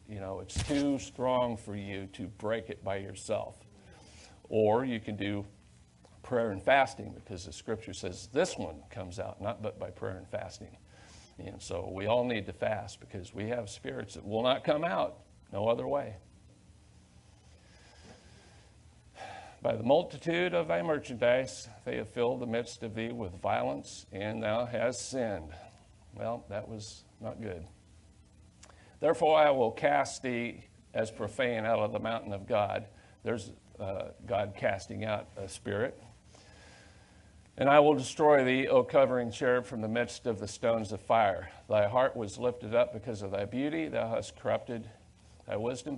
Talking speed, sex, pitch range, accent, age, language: 165 wpm, male, 100-125 Hz, American, 50-69, English